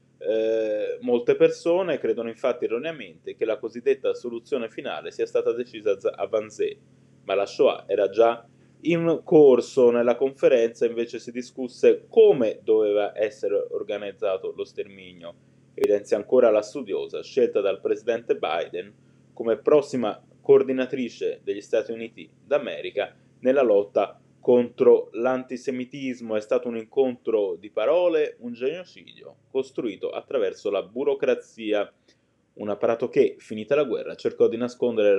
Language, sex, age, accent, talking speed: Italian, male, 20-39, native, 130 wpm